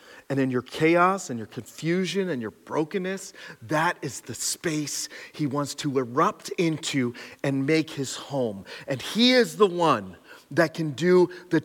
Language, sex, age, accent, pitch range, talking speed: English, male, 40-59, American, 145-180 Hz, 165 wpm